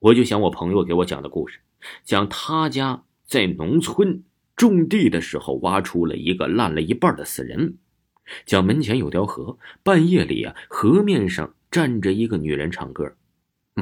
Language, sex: Chinese, male